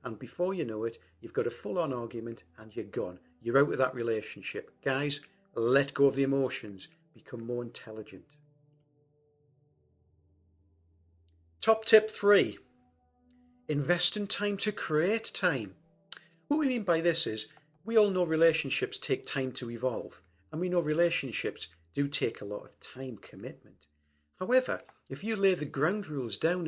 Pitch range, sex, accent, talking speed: 115-165 Hz, male, British, 155 wpm